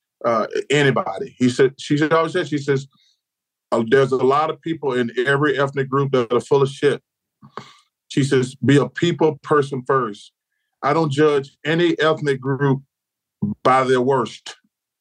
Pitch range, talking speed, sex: 135-170 Hz, 150 wpm, male